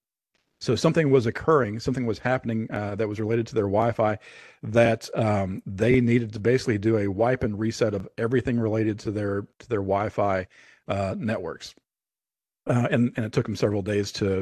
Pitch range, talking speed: 110-130 Hz, 185 wpm